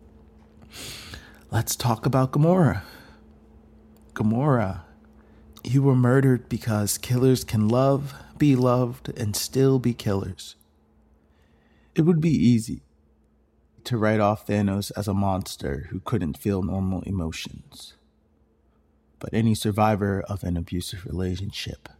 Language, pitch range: English, 85-120 Hz